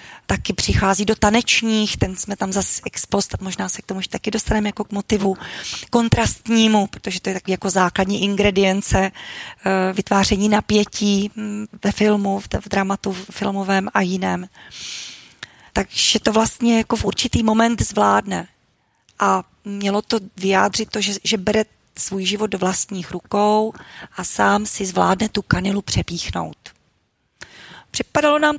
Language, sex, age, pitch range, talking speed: Czech, female, 30-49, 195-220 Hz, 140 wpm